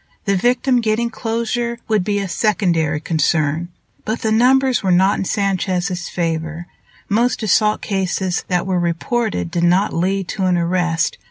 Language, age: English, 50-69